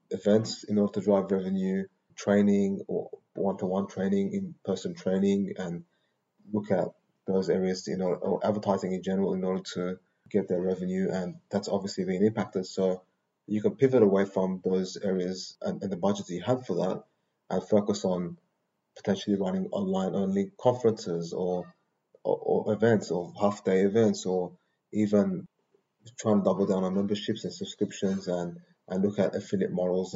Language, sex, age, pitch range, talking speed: English, male, 20-39, 90-100 Hz, 165 wpm